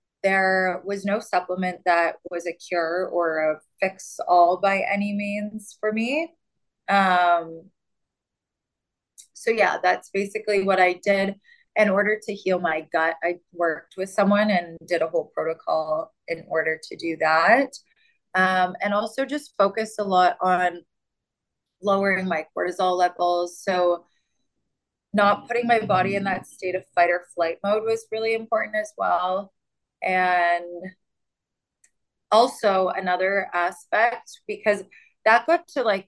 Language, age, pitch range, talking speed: English, 20-39, 175-210 Hz, 140 wpm